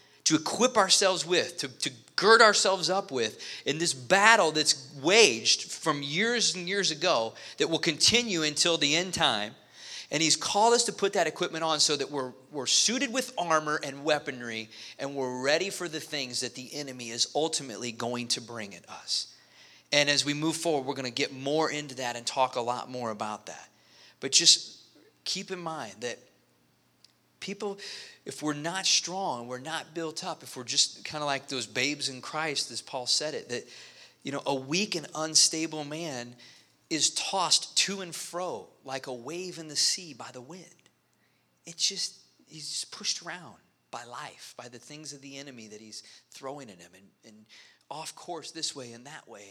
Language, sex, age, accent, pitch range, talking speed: English, male, 30-49, American, 130-170 Hz, 190 wpm